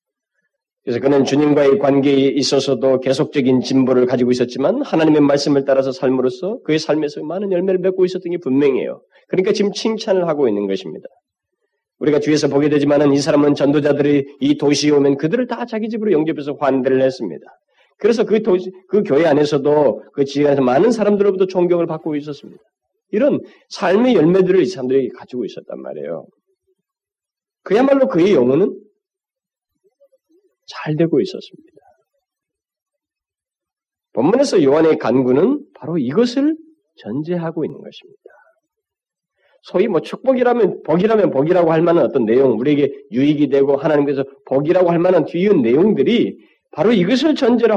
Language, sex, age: Korean, male, 30-49